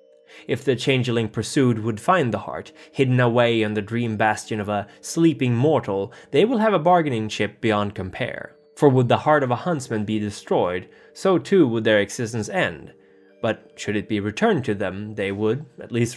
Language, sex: English, male